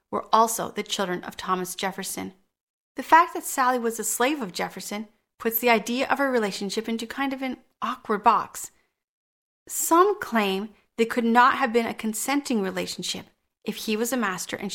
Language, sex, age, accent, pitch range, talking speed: English, female, 30-49, American, 200-245 Hz, 180 wpm